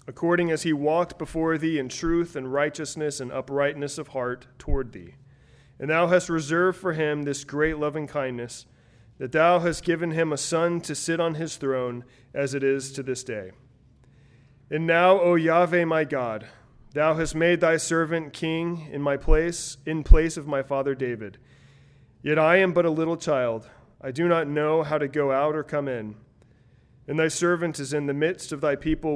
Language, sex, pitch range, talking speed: English, male, 135-165 Hz, 190 wpm